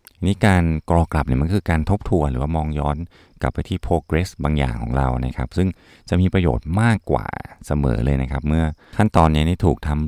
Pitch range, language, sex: 70-90 Hz, Thai, male